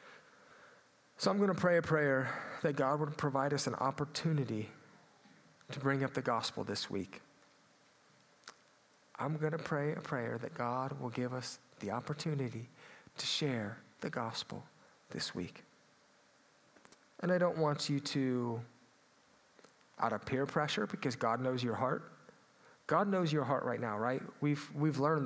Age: 40-59